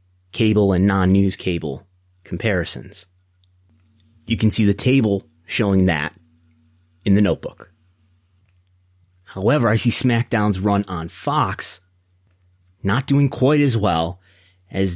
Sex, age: male, 30-49